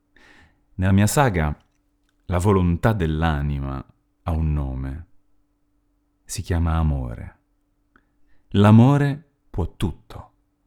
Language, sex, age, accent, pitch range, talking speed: Italian, male, 30-49, native, 80-105 Hz, 85 wpm